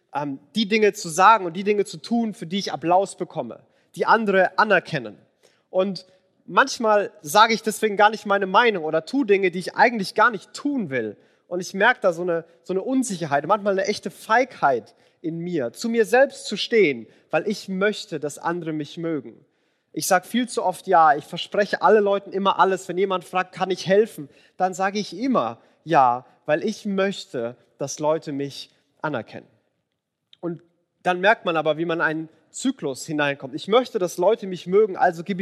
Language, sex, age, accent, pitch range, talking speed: German, male, 30-49, German, 165-215 Hz, 190 wpm